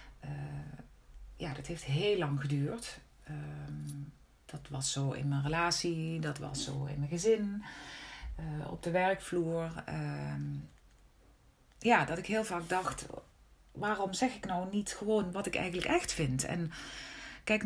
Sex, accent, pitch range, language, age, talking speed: female, Dutch, 140-175 Hz, Dutch, 40-59, 150 wpm